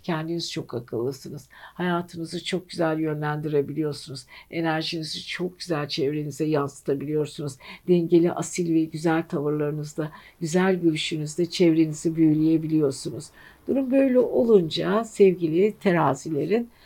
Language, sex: Turkish, female